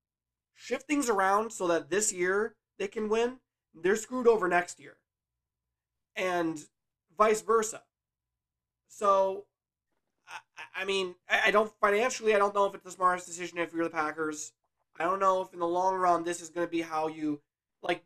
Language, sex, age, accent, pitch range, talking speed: English, male, 20-39, American, 145-195 Hz, 175 wpm